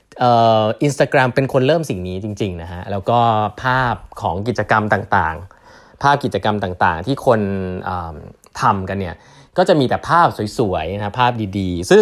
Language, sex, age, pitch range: Thai, male, 20-39, 100-140 Hz